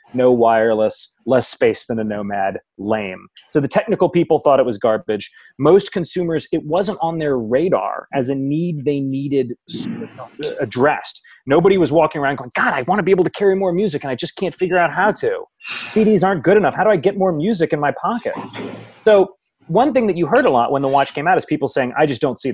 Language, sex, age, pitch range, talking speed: English, male, 30-49, 115-165 Hz, 225 wpm